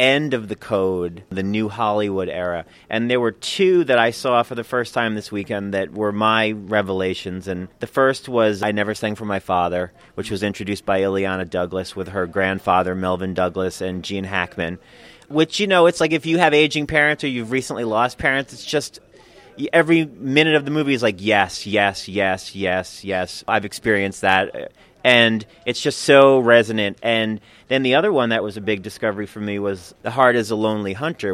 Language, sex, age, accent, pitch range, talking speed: English, male, 30-49, American, 100-120 Hz, 200 wpm